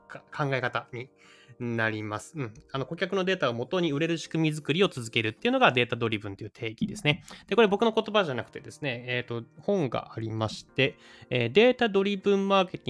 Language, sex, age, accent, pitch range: Japanese, male, 20-39, native, 115-165 Hz